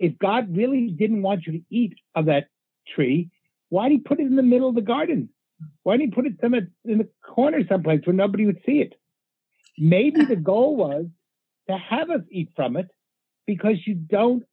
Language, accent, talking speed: English, American, 200 wpm